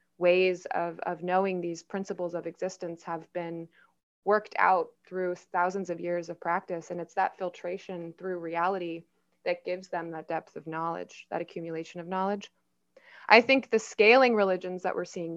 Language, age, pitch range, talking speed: English, 20-39, 175-205 Hz, 170 wpm